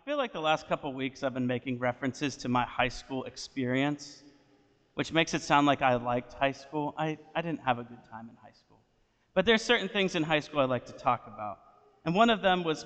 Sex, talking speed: male, 245 wpm